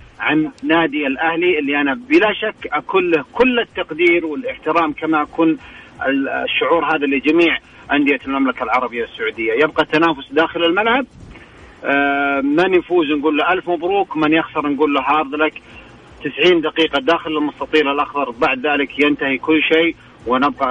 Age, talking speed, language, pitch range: 40-59, 135 wpm, Arabic, 140-170 Hz